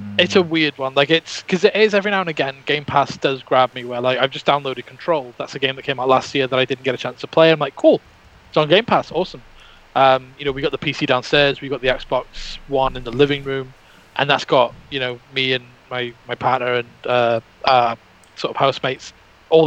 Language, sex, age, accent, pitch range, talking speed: English, male, 20-39, British, 125-150 Hz, 255 wpm